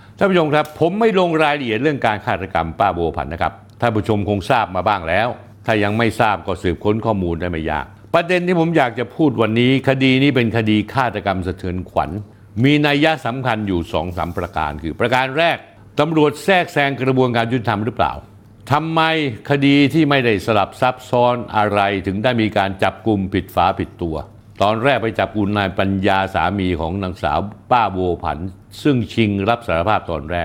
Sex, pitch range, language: male, 95-130 Hz, Thai